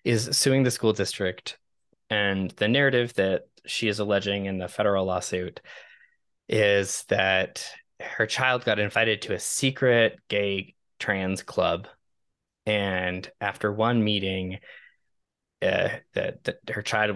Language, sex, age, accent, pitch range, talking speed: English, male, 20-39, American, 90-110 Hz, 125 wpm